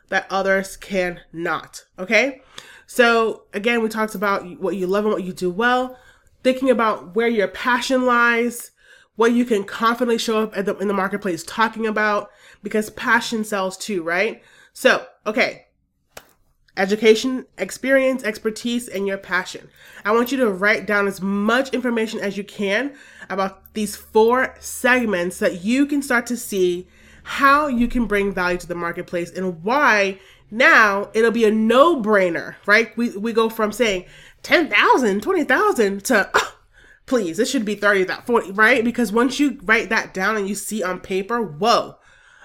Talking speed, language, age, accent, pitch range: 165 wpm, English, 30-49, American, 195-240 Hz